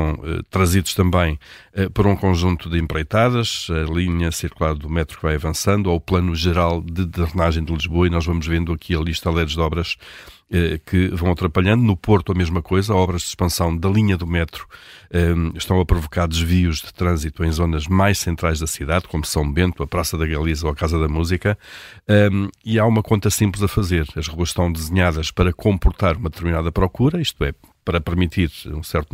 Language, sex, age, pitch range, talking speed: Portuguese, male, 50-69, 80-95 Hz, 200 wpm